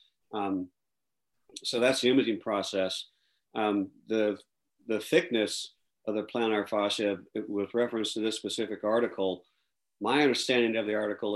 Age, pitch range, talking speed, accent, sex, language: 50-69, 100-120 Hz, 135 wpm, American, male, English